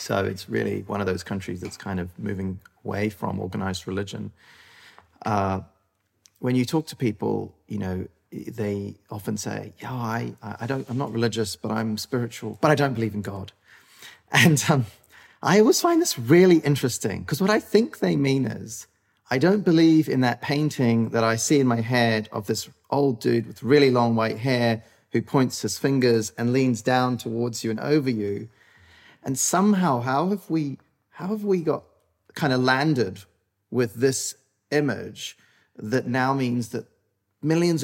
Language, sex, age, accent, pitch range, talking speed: English, male, 30-49, British, 105-135 Hz, 175 wpm